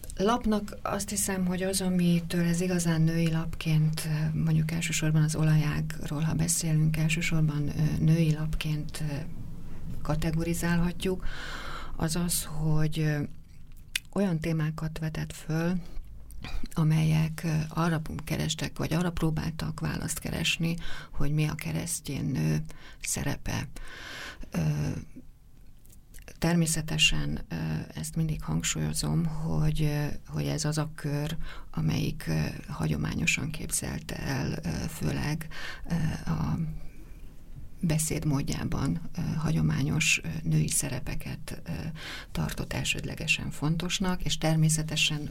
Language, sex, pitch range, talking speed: Hungarian, female, 150-165 Hz, 85 wpm